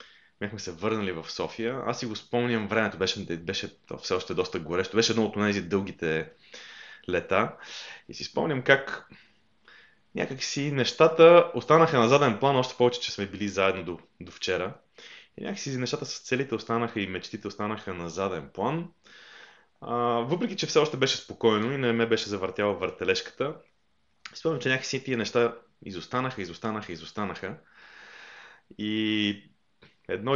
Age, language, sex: 20-39, Bulgarian, male